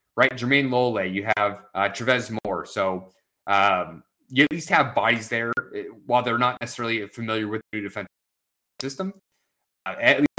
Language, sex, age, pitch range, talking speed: English, male, 30-49, 105-135 Hz, 170 wpm